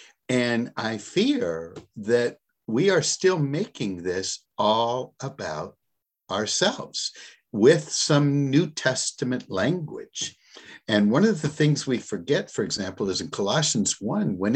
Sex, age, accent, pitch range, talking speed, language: male, 60-79, American, 100-130 Hz, 130 wpm, English